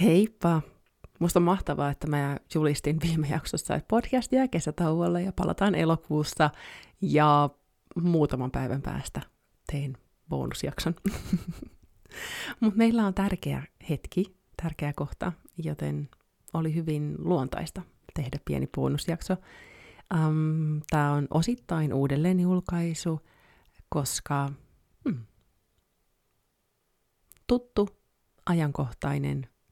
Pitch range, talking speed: 145-190 Hz, 90 wpm